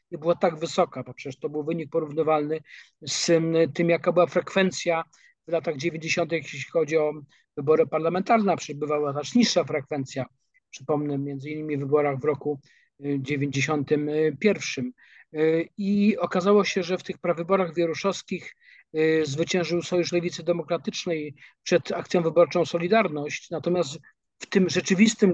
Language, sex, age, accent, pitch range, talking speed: Polish, male, 50-69, native, 155-175 Hz, 130 wpm